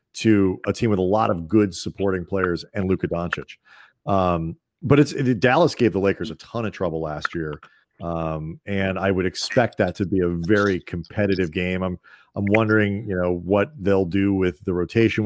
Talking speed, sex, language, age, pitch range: 195 wpm, male, English, 40-59, 90-110 Hz